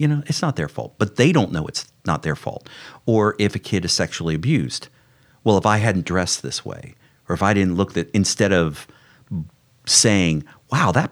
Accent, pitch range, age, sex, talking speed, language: American, 90-125 Hz, 40-59, male, 210 wpm, English